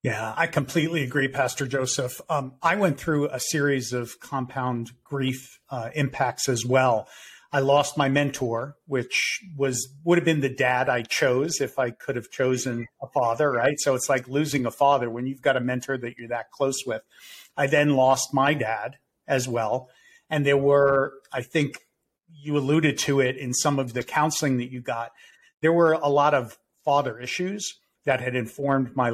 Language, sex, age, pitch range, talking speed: English, male, 50-69, 125-150 Hz, 185 wpm